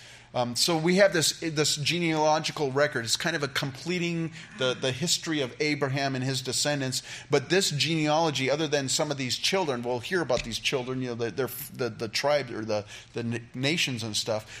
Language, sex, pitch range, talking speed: English, male, 120-145 Hz, 195 wpm